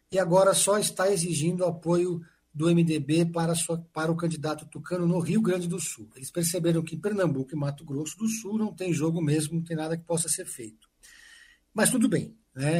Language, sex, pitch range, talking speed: Portuguese, male, 155-190 Hz, 200 wpm